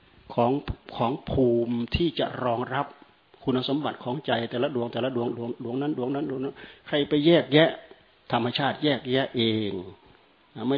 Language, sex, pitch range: Thai, male, 120-150 Hz